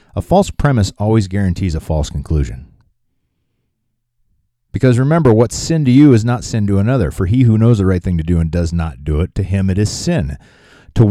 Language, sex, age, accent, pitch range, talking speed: English, male, 30-49, American, 85-115 Hz, 210 wpm